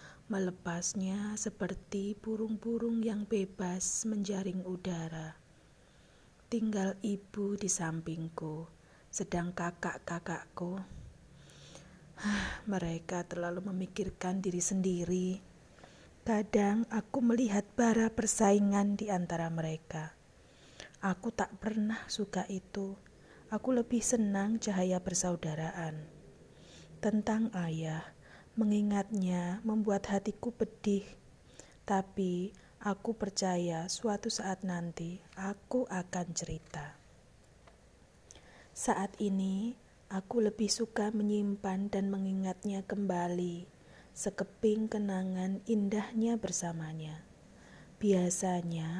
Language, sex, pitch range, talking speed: Indonesian, female, 180-215 Hz, 80 wpm